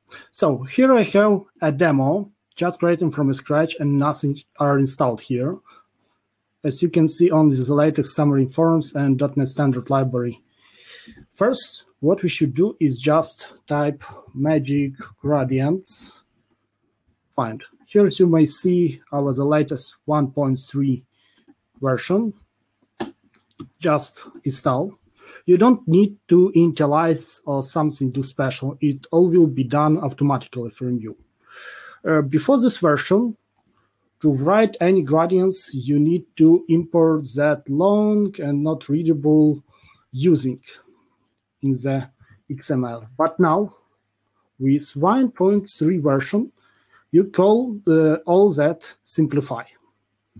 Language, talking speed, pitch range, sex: English, 120 wpm, 135-175 Hz, male